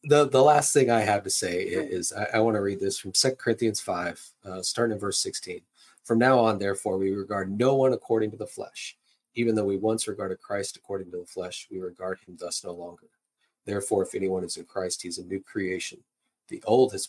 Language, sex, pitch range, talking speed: English, male, 95-115 Hz, 235 wpm